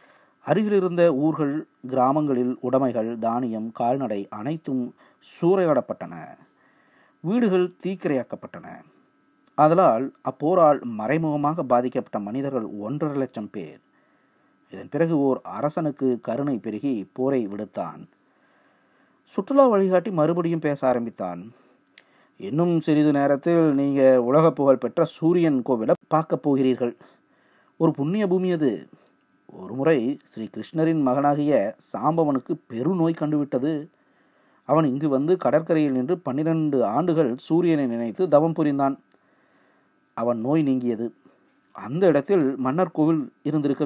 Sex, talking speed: male, 95 wpm